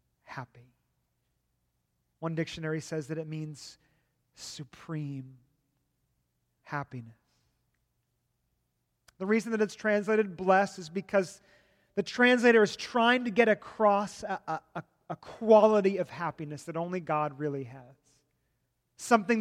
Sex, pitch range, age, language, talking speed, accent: male, 145-210 Hz, 30-49, English, 110 wpm, American